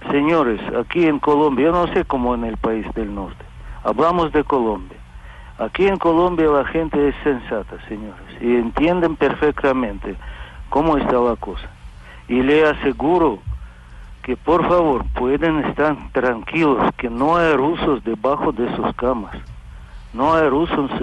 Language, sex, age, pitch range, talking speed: Spanish, male, 60-79, 115-150 Hz, 145 wpm